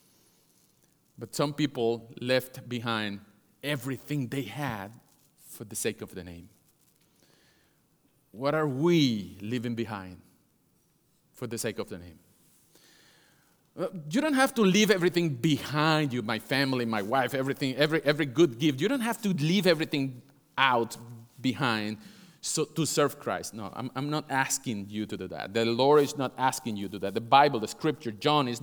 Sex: male